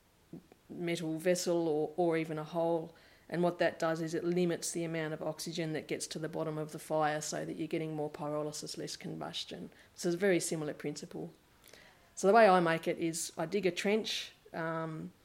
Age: 40-59